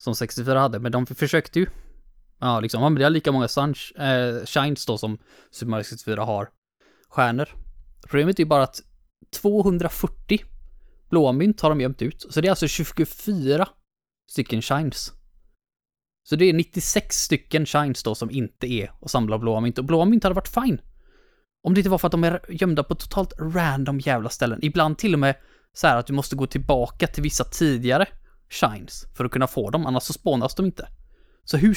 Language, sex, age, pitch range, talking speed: Swedish, male, 20-39, 120-160 Hz, 190 wpm